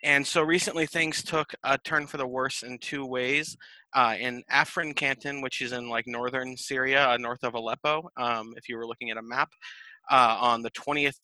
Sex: male